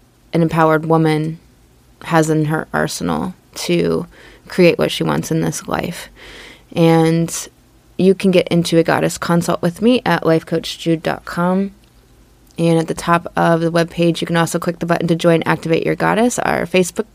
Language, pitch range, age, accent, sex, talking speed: English, 165-180 Hz, 20-39, American, female, 165 wpm